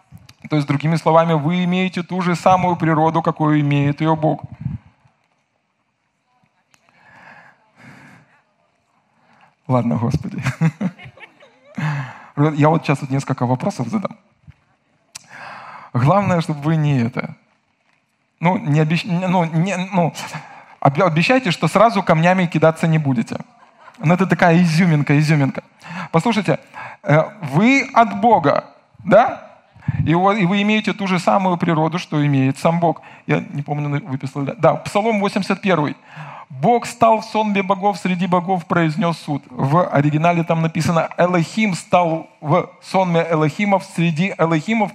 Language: Russian